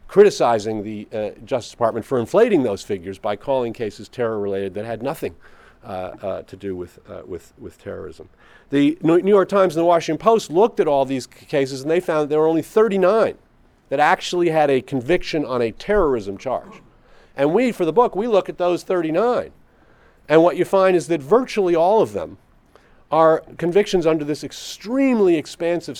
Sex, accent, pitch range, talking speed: male, American, 140-190 Hz, 190 wpm